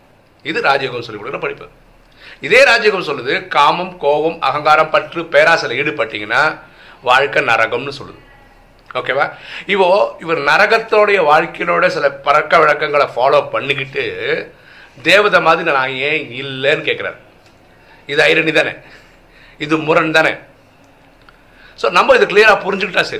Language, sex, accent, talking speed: Tamil, male, native, 50 wpm